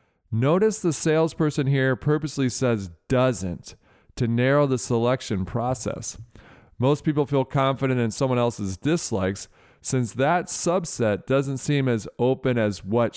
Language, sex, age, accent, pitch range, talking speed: English, male, 40-59, American, 110-145 Hz, 130 wpm